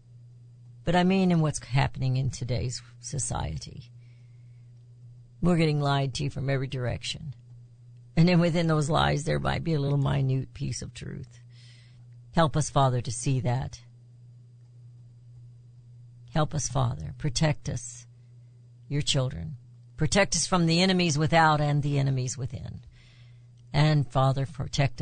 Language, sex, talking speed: English, female, 135 wpm